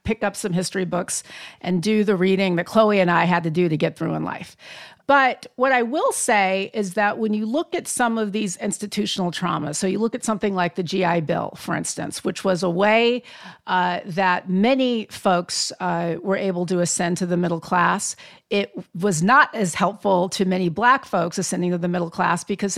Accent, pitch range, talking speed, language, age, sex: American, 180-225 Hz, 210 wpm, English, 50-69, female